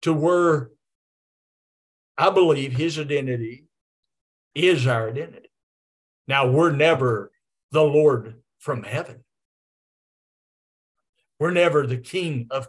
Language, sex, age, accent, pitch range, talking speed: English, male, 50-69, American, 120-170 Hz, 100 wpm